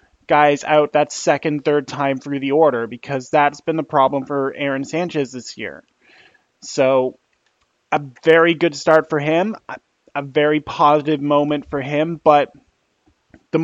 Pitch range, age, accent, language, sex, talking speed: 135-160 Hz, 20-39, American, English, male, 150 wpm